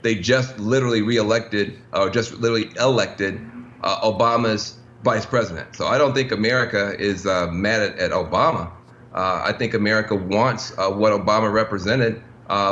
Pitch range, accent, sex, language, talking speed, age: 110-130 Hz, American, male, English, 160 wpm, 40-59